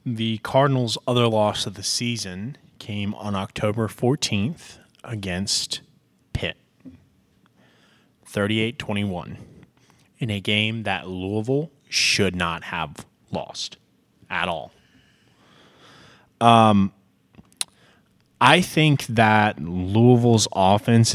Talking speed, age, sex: 90 wpm, 20-39, male